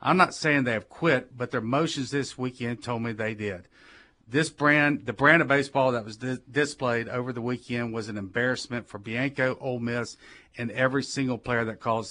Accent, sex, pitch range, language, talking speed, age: American, male, 115-140 Hz, English, 205 wpm, 40-59